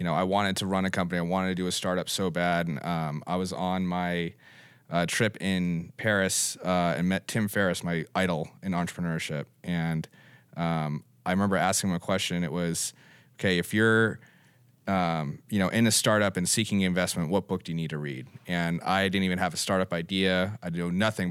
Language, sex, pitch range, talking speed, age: English, male, 85-100 Hz, 210 wpm, 30-49